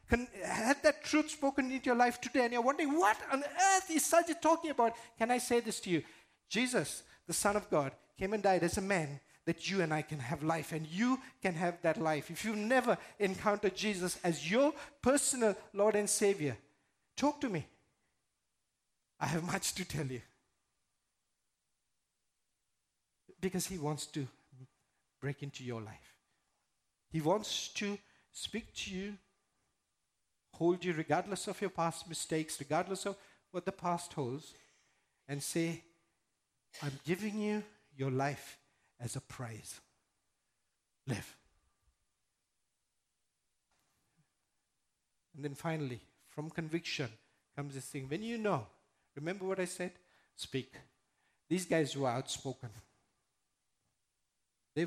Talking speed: 140 wpm